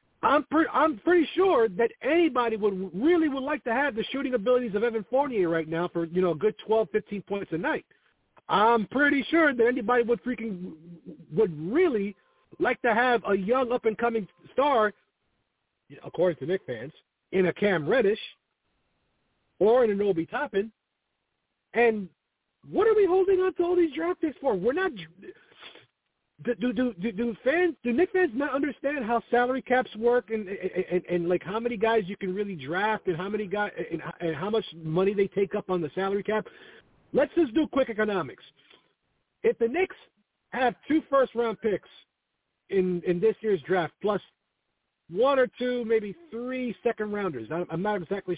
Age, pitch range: 50-69, 190-275 Hz